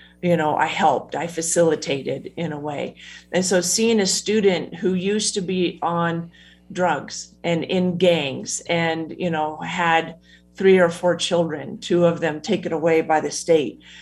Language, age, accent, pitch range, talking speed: English, 40-59, American, 165-185 Hz, 165 wpm